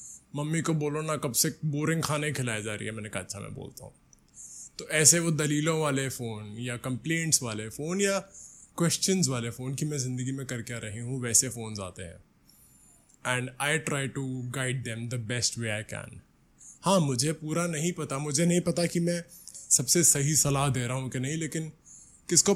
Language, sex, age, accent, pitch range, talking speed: Hindi, male, 20-39, native, 125-170 Hz, 200 wpm